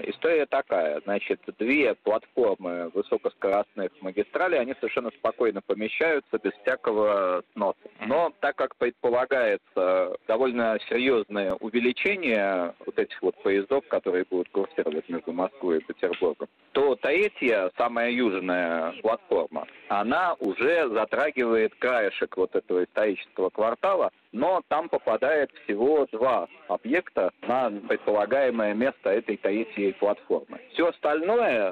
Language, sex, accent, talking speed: Russian, male, native, 110 wpm